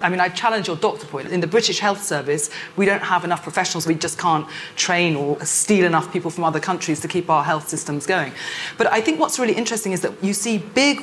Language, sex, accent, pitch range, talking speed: English, female, British, 170-215 Hz, 245 wpm